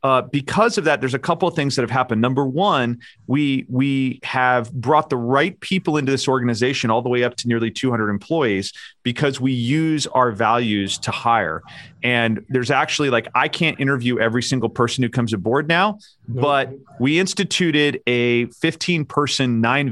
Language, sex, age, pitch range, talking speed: English, male, 40-59, 115-145 Hz, 180 wpm